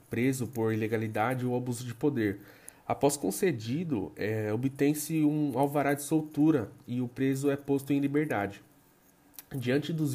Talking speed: 135 wpm